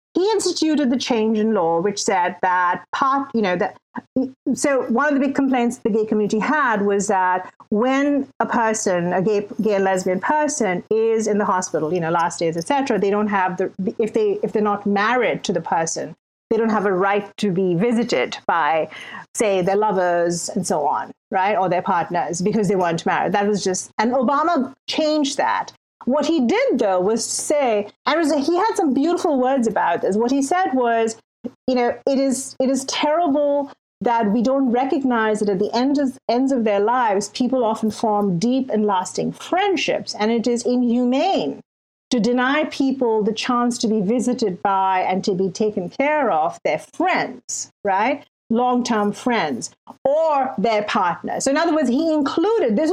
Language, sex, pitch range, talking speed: English, female, 205-275 Hz, 185 wpm